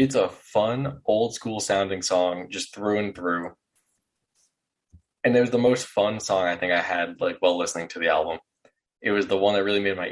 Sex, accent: male, American